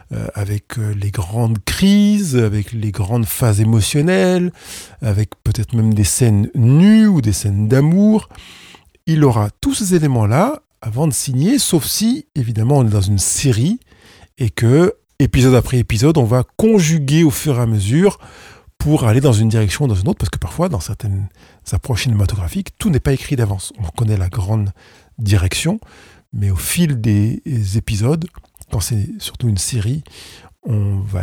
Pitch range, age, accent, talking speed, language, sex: 105-150 Hz, 40-59, French, 165 wpm, French, male